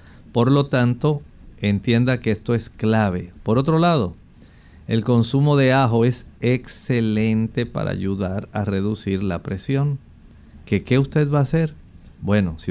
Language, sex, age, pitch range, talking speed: Spanish, male, 50-69, 100-135 Hz, 140 wpm